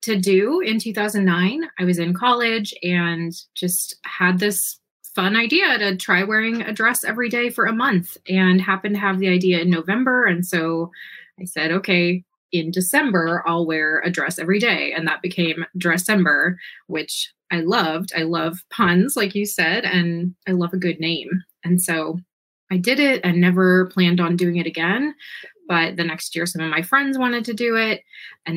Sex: female